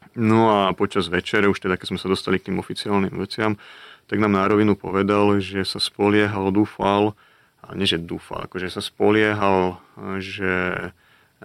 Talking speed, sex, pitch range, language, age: 165 wpm, male, 95-105 Hz, Slovak, 30-49